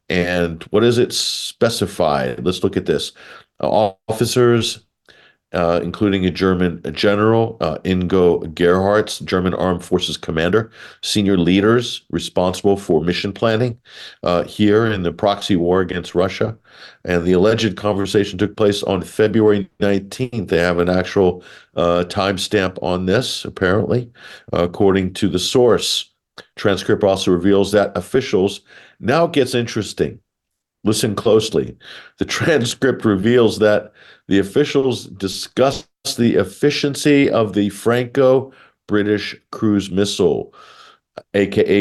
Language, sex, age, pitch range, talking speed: English, male, 50-69, 90-110 Hz, 125 wpm